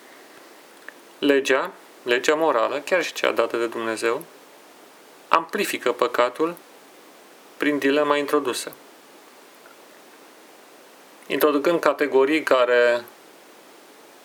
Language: Romanian